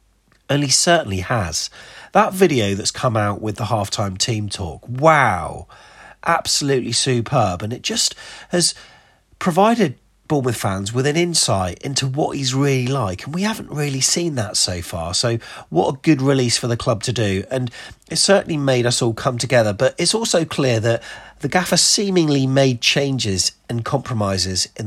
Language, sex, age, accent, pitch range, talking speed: English, male, 30-49, British, 110-145 Hz, 170 wpm